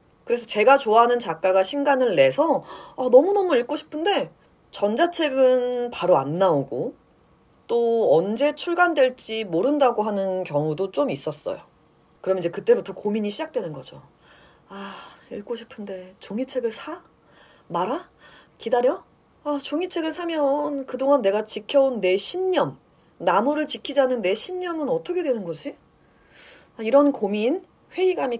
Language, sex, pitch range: Korean, female, 190-285 Hz